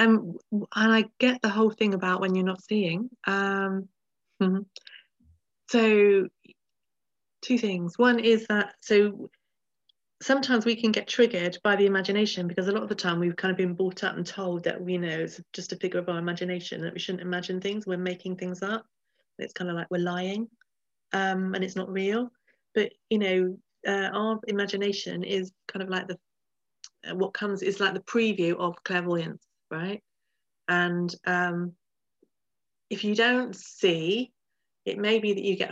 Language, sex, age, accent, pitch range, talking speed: English, female, 30-49, British, 180-215 Hz, 175 wpm